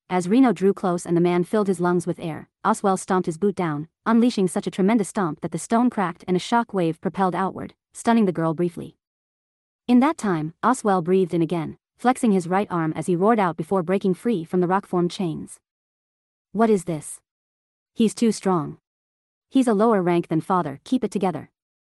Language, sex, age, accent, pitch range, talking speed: English, female, 30-49, American, 170-215 Hz, 200 wpm